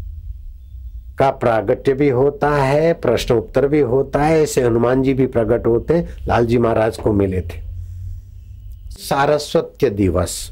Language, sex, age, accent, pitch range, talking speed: Hindi, male, 60-79, native, 95-145 Hz, 130 wpm